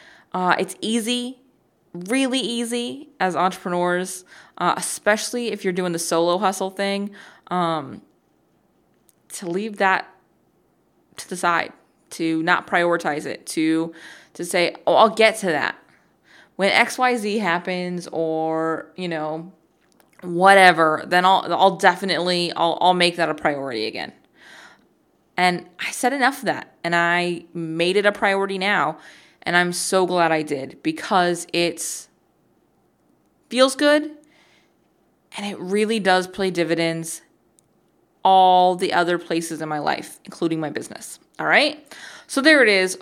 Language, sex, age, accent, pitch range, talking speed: English, female, 20-39, American, 170-215 Hz, 140 wpm